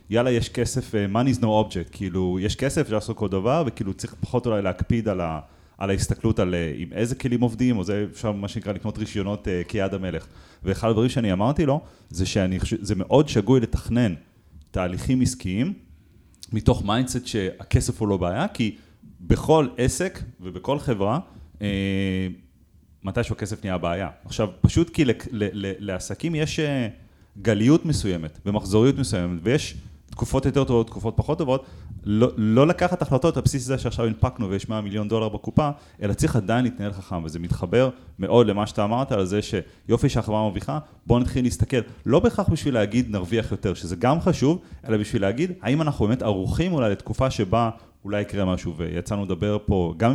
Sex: male